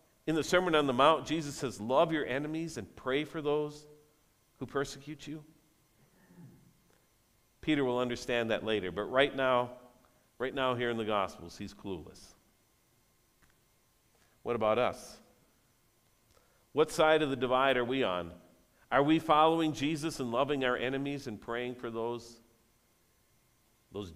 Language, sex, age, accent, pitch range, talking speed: English, male, 50-69, American, 110-140 Hz, 145 wpm